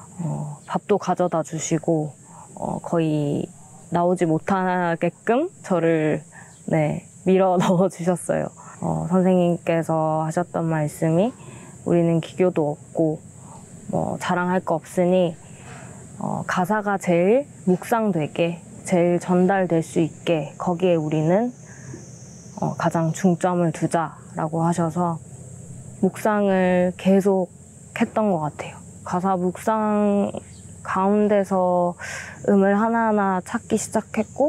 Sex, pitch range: female, 165-195 Hz